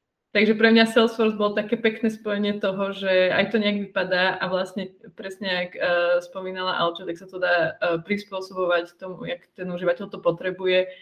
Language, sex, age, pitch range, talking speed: Czech, female, 20-39, 180-200 Hz, 180 wpm